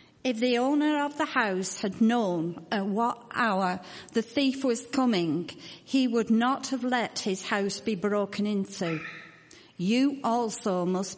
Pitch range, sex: 190-265 Hz, female